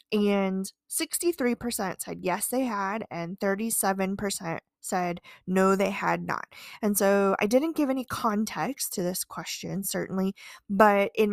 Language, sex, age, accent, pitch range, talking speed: English, female, 20-39, American, 185-240 Hz, 140 wpm